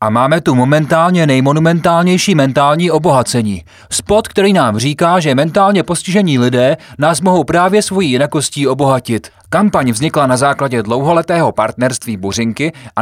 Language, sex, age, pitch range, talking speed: Czech, male, 30-49, 110-155 Hz, 135 wpm